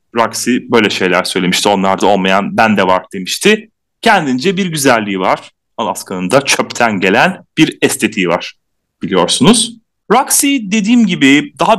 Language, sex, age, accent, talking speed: Turkish, male, 30-49, native, 130 wpm